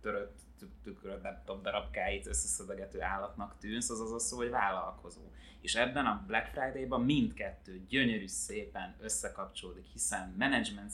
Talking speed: 125 wpm